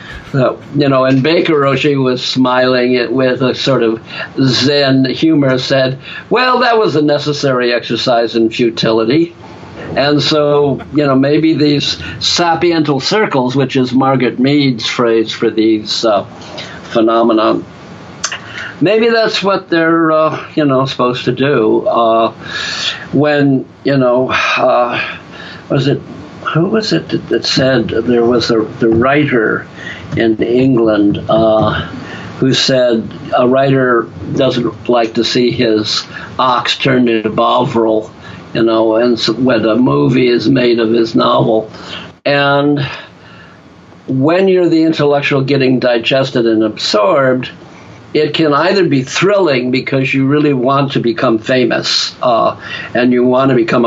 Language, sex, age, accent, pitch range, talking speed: English, male, 60-79, American, 115-145 Hz, 135 wpm